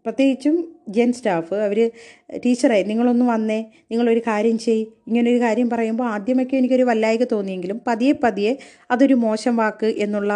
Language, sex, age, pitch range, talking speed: Malayalam, female, 30-49, 200-250 Hz, 135 wpm